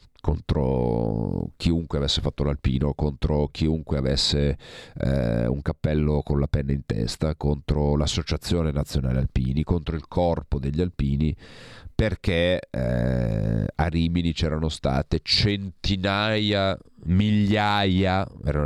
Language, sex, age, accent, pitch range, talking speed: Italian, male, 40-59, native, 75-90 Hz, 110 wpm